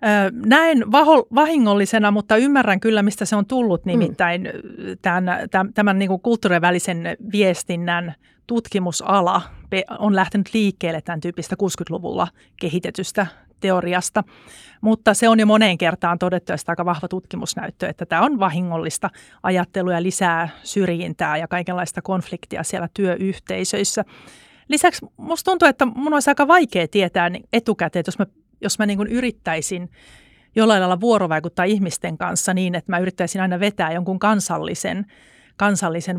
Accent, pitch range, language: native, 175-215 Hz, Finnish